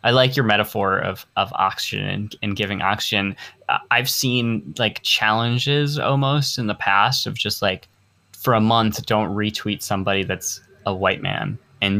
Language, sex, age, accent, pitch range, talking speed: English, male, 10-29, American, 100-115 Hz, 160 wpm